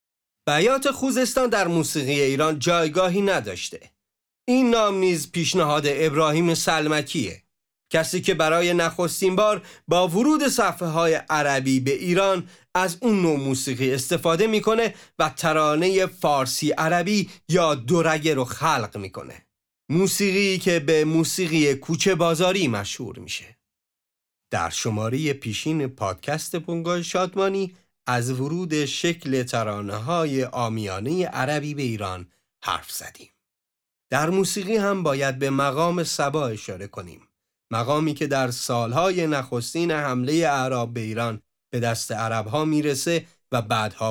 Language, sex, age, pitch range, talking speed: Persian, male, 40-59, 120-175 Hz, 120 wpm